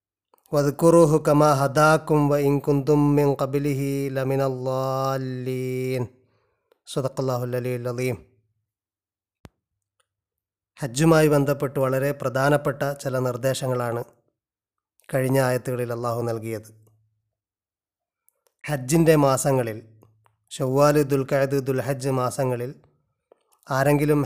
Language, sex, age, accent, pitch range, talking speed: Malayalam, male, 30-49, native, 125-145 Hz, 45 wpm